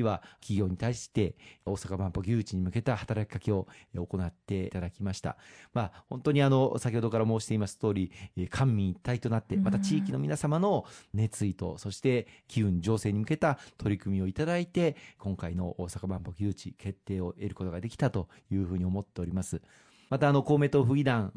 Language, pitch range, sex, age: Japanese, 95-120 Hz, male, 40-59